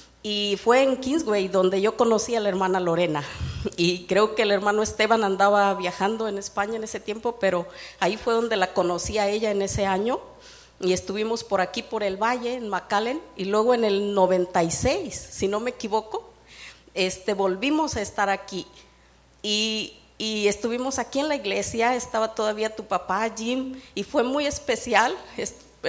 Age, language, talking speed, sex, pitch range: 40-59, English, 175 wpm, female, 195-240 Hz